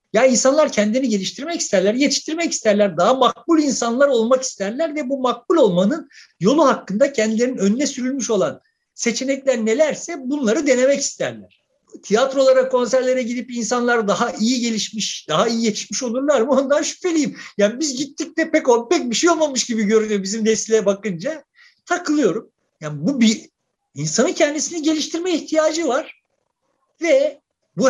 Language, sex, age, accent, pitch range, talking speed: Turkish, male, 50-69, native, 220-295 Hz, 140 wpm